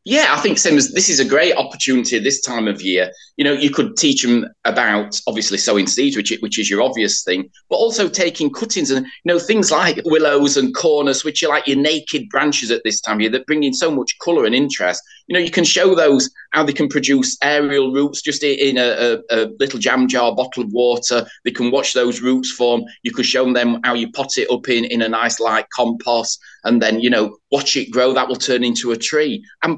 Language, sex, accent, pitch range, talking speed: English, male, British, 120-145 Hz, 240 wpm